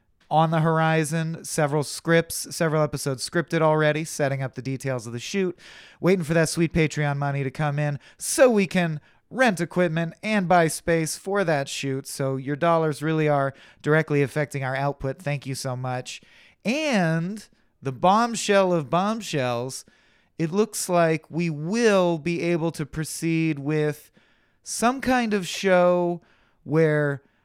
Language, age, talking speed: English, 30-49, 150 wpm